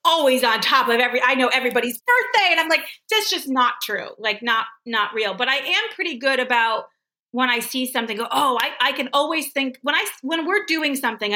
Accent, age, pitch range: American, 30-49, 220-280 Hz